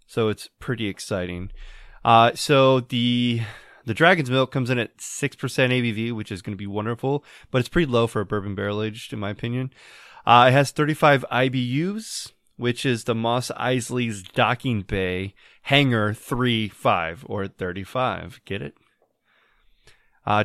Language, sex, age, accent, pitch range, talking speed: English, male, 20-39, American, 110-130 Hz, 155 wpm